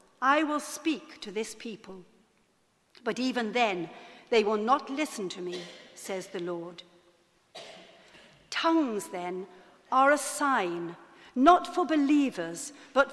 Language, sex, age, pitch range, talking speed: English, female, 60-79, 195-280 Hz, 125 wpm